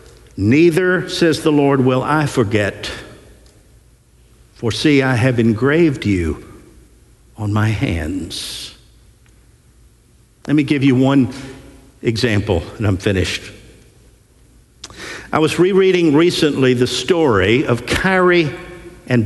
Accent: American